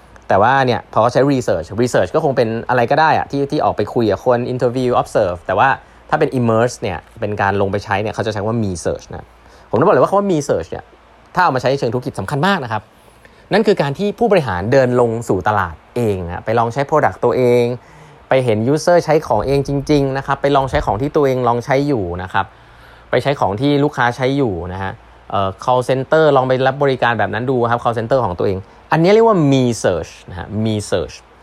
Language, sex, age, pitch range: Thai, male, 20-39, 105-140 Hz